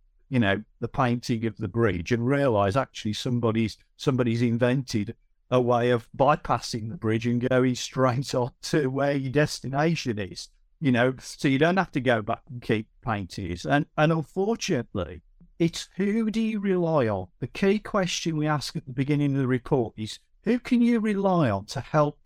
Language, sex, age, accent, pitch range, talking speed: English, male, 50-69, British, 115-155 Hz, 185 wpm